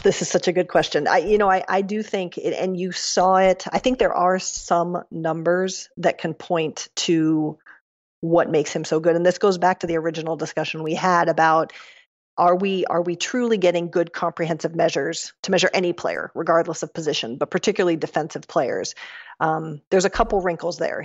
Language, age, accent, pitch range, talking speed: English, 40-59, American, 165-185 Hz, 200 wpm